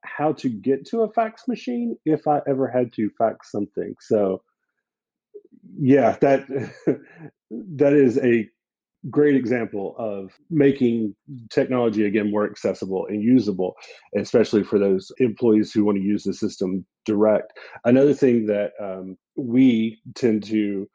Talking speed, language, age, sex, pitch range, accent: 140 wpm, English, 40-59, male, 105-135 Hz, American